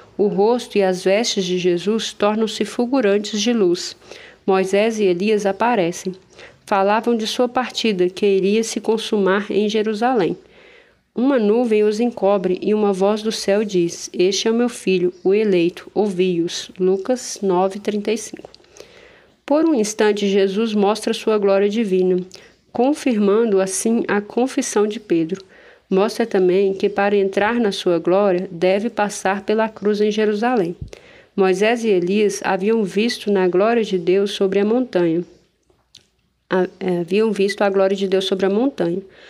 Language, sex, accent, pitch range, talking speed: Portuguese, female, Brazilian, 190-225 Hz, 145 wpm